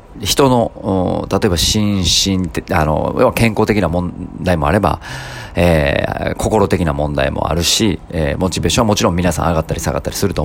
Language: Japanese